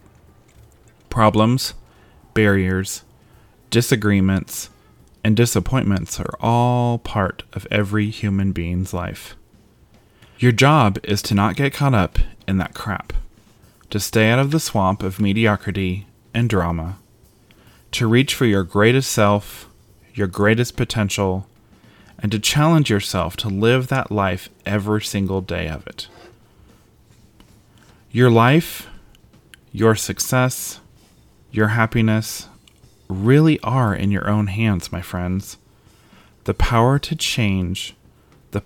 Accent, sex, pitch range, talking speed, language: American, male, 95-115 Hz, 115 wpm, English